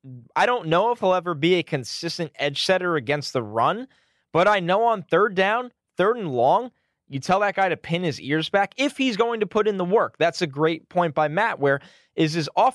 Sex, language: male, English